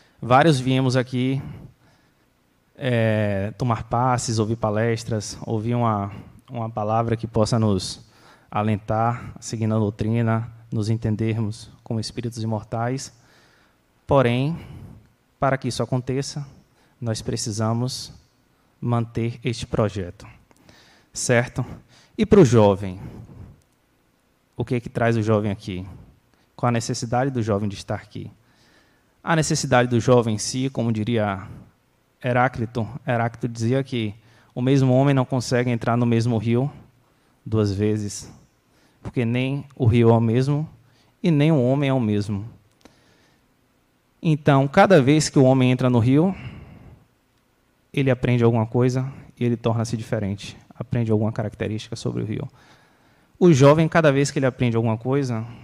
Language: Portuguese